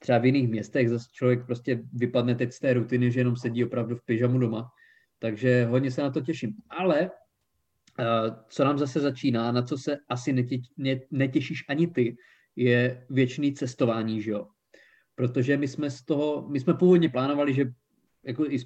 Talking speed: 185 wpm